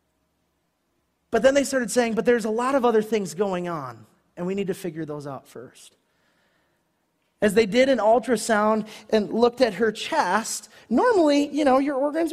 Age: 30-49